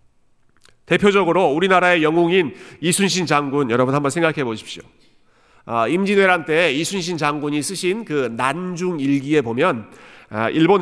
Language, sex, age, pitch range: Korean, male, 40-59, 130-175 Hz